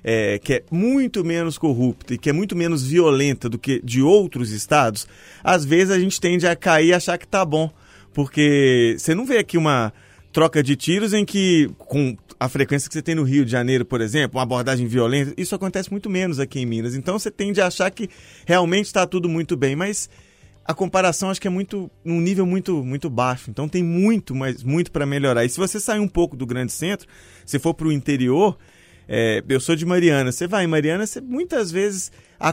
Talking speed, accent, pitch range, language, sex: 215 wpm, Brazilian, 135-190 Hz, Portuguese, male